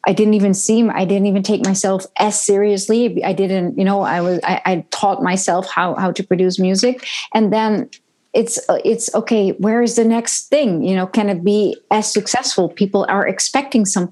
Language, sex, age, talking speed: English, female, 30-49, 195 wpm